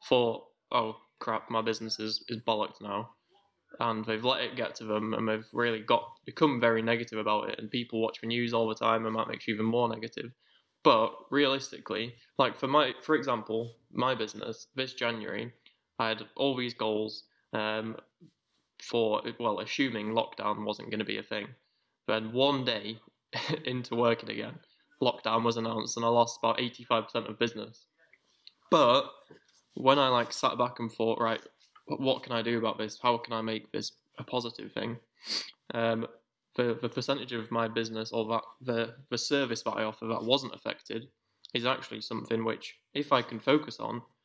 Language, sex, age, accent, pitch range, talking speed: English, male, 10-29, British, 110-120 Hz, 185 wpm